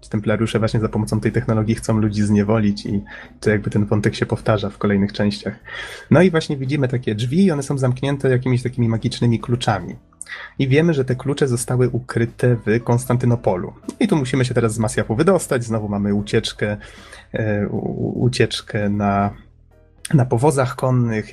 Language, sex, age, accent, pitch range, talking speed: Polish, male, 30-49, native, 110-125 Hz, 165 wpm